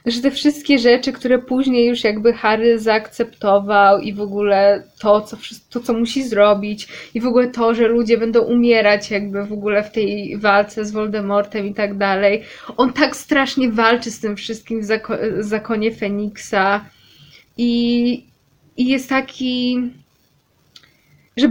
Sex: female